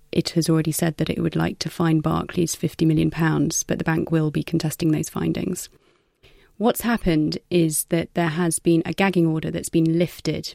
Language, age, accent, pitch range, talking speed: English, 30-49, British, 155-170 Hz, 195 wpm